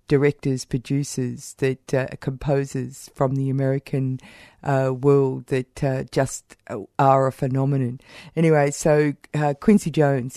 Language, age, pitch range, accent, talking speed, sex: English, 50-69, 135-155 Hz, Australian, 120 wpm, female